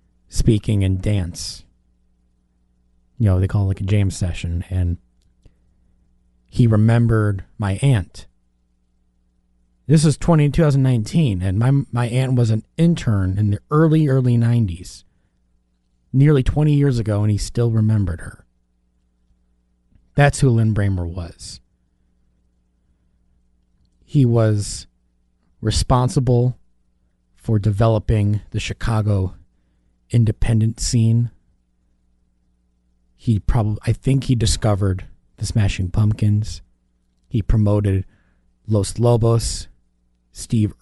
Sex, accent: male, American